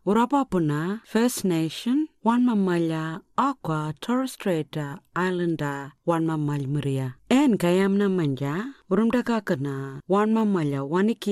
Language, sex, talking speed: English, female, 100 wpm